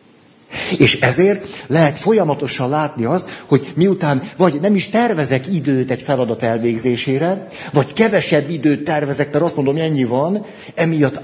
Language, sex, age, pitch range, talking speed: Hungarian, male, 60-79, 125-170 Hz, 140 wpm